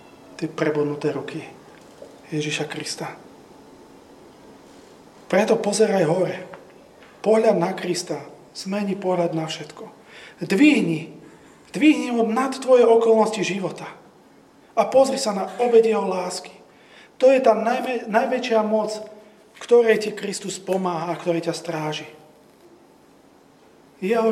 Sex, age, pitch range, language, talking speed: male, 30-49, 160-230 Hz, Slovak, 105 wpm